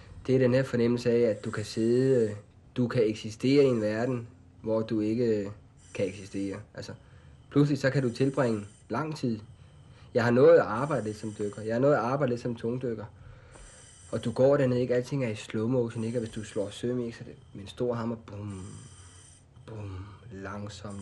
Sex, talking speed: male, 190 wpm